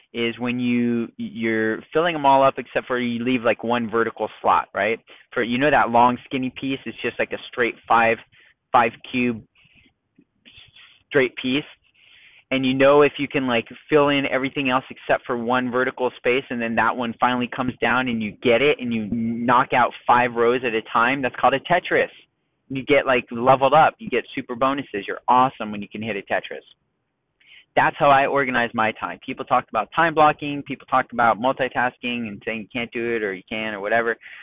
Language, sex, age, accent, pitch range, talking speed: English, male, 30-49, American, 120-140 Hz, 205 wpm